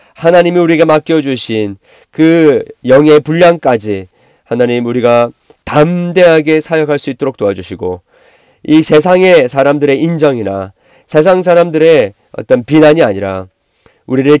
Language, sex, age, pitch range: Korean, male, 40-59, 115-150 Hz